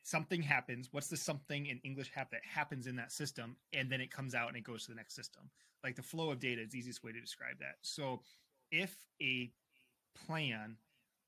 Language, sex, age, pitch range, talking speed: English, male, 30-49, 120-145 Hz, 220 wpm